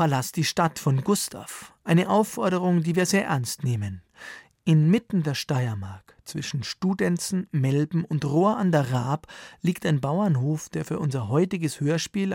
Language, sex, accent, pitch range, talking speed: German, male, German, 140-170 Hz, 145 wpm